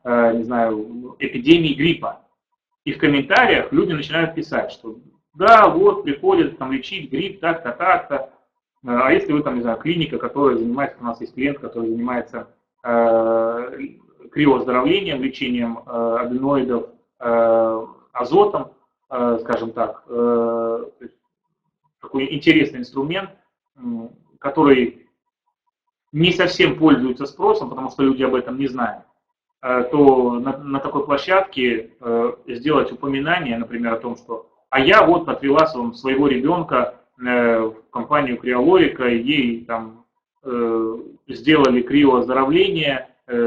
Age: 30-49